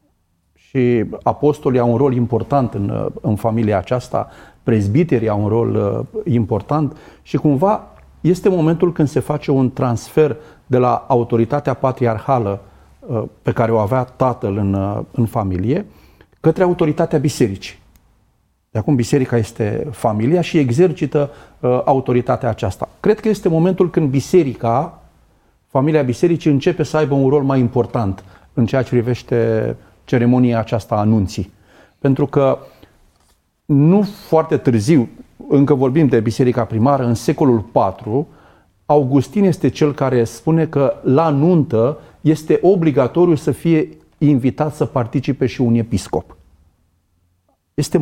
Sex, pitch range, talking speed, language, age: male, 110-150 Hz, 135 wpm, Romanian, 40-59